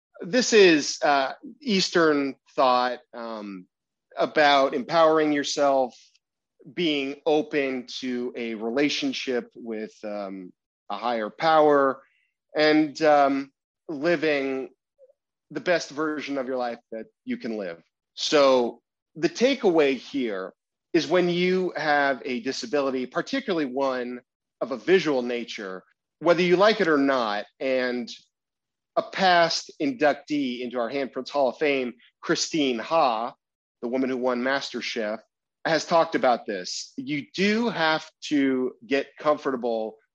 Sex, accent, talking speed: male, American, 120 wpm